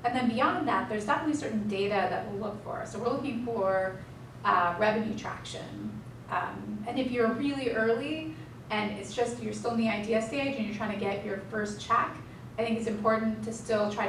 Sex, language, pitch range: female, English, 200-240 Hz